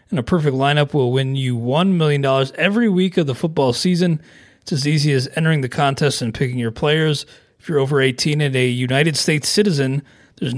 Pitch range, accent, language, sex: 135-165 Hz, American, English, male